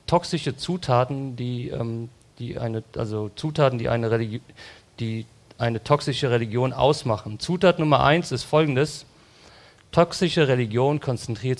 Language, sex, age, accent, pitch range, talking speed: English, male, 40-59, German, 115-145 Hz, 125 wpm